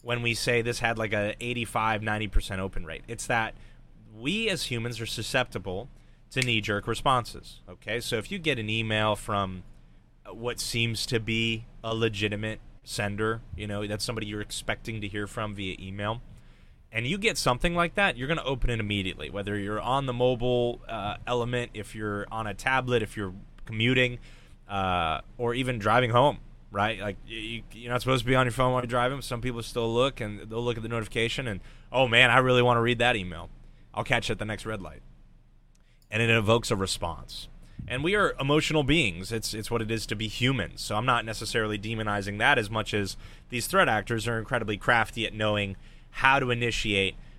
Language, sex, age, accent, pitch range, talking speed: English, male, 20-39, American, 105-120 Hz, 200 wpm